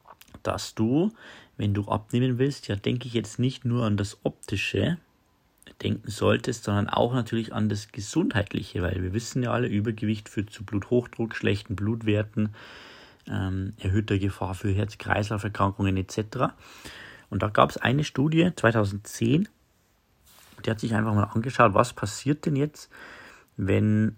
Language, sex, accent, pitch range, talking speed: German, male, German, 100-120 Hz, 145 wpm